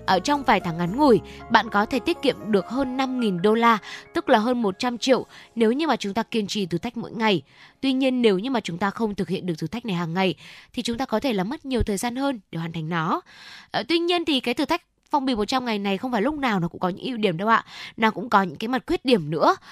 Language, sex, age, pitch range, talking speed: Vietnamese, female, 10-29, 190-250 Hz, 290 wpm